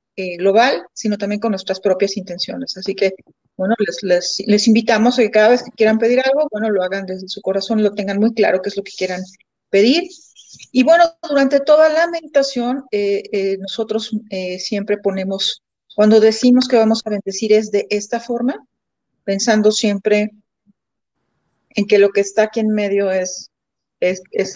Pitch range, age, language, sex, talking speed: 195-230 Hz, 40-59, Spanish, female, 180 wpm